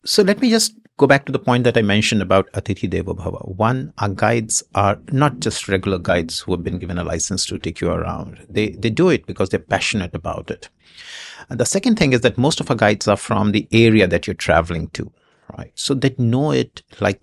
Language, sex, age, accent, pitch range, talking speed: English, male, 60-79, Indian, 95-125 Hz, 230 wpm